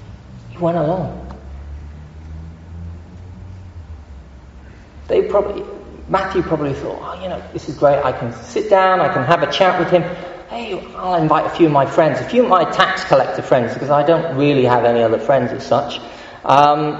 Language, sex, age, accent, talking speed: English, male, 40-59, British, 175 wpm